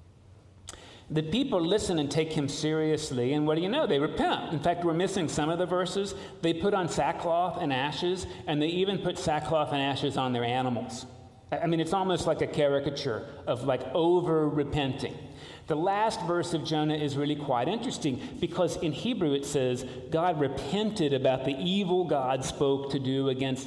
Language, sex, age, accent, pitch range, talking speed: English, male, 40-59, American, 130-175 Hz, 185 wpm